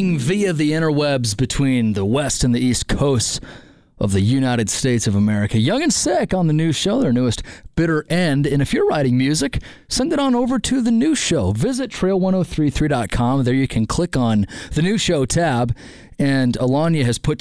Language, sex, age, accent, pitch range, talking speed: English, male, 30-49, American, 125-195 Hz, 190 wpm